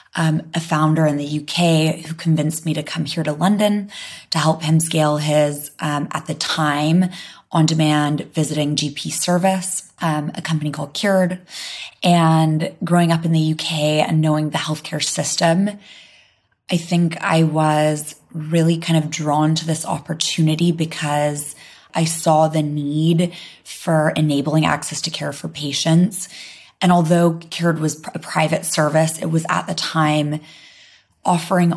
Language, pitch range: English, 150-175 Hz